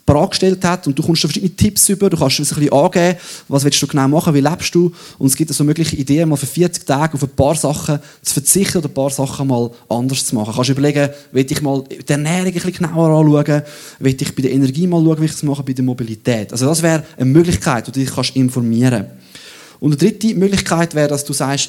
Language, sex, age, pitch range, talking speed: German, male, 20-39, 125-160 Hz, 245 wpm